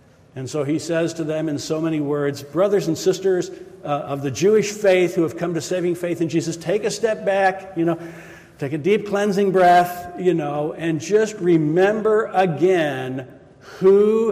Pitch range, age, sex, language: 150-195 Hz, 60-79, male, English